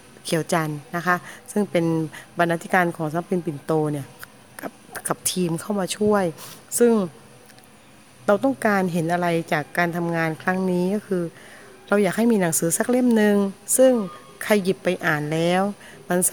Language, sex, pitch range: Thai, female, 165-205 Hz